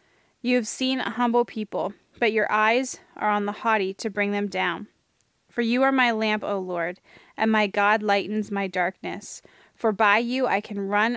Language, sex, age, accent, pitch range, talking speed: English, female, 20-39, American, 205-235 Hz, 195 wpm